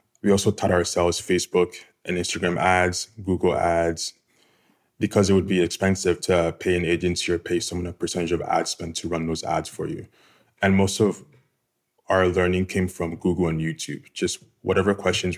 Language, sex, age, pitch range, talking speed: English, male, 20-39, 85-95 Hz, 180 wpm